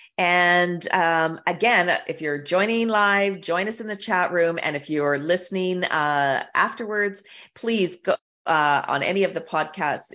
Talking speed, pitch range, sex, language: 160 wpm, 145-195 Hz, female, English